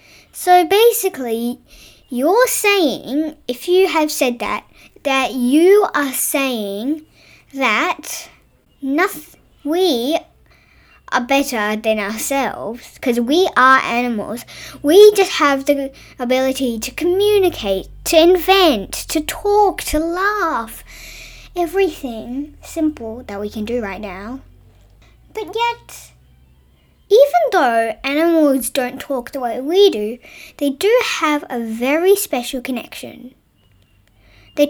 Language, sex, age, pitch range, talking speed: English, female, 10-29, 240-345 Hz, 110 wpm